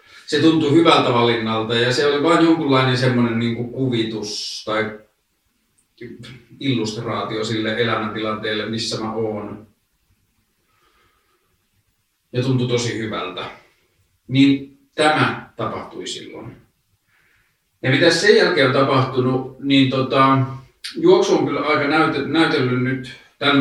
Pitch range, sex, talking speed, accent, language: 110-135 Hz, male, 105 wpm, native, Finnish